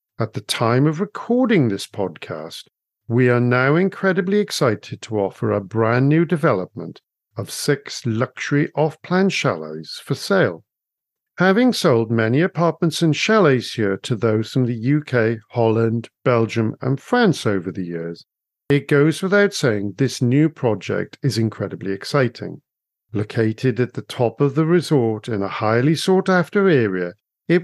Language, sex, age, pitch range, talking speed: English, male, 50-69, 110-155 Hz, 150 wpm